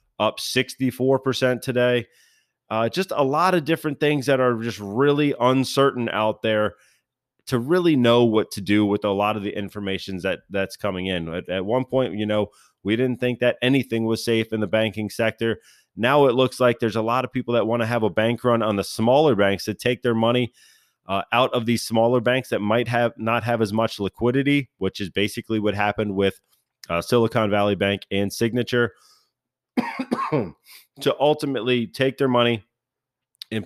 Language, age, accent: English, 20-39, American